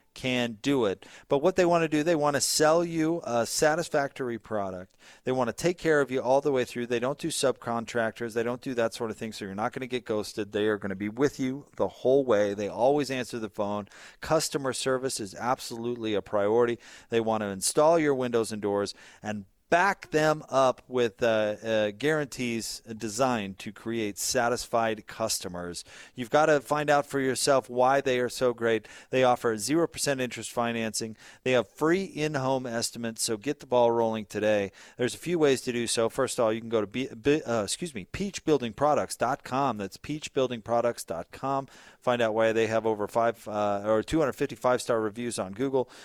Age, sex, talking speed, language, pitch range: 40-59, male, 200 wpm, English, 110-145 Hz